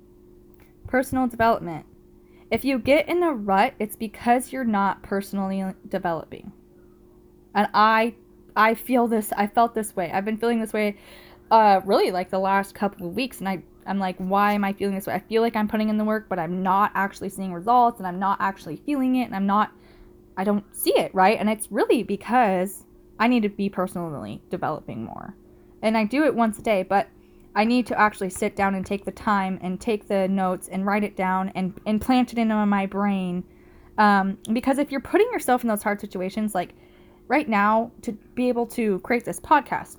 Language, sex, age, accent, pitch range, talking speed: English, female, 10-29, American, 190-225 Hz, 205 wpm